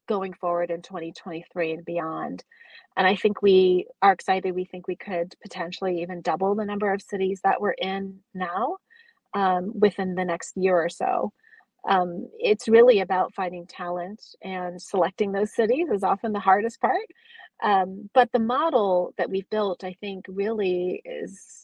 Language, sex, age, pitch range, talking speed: English, female, 30-49, 185-210 Hz, 165 wpm